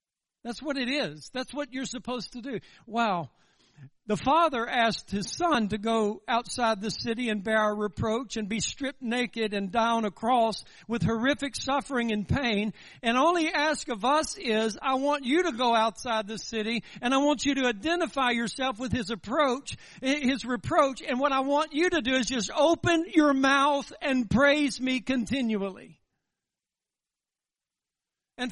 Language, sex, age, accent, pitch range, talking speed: English, male, 60-79, American, 225-280 Hz, 175 wpm